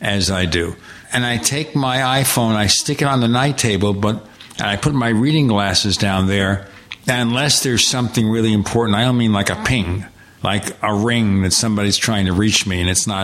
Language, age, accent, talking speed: English, 60-79, American, 210 wpm